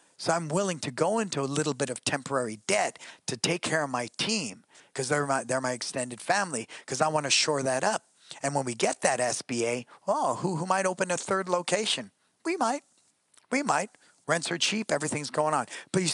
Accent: American